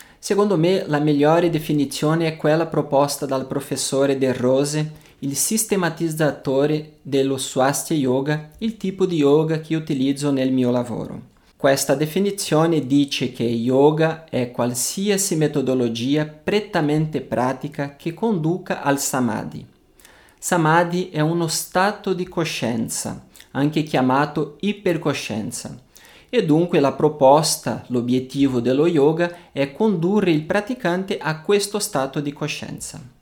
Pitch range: 135-170 Hz